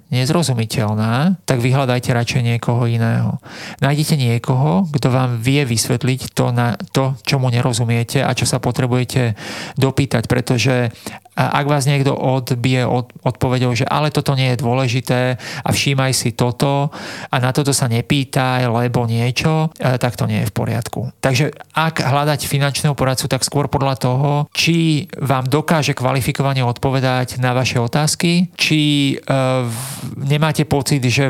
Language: Slovak